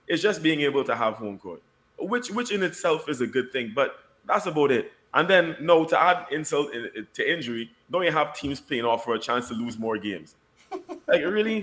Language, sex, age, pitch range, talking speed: English, male, 20-39, 115-175 Hz, 220 wpm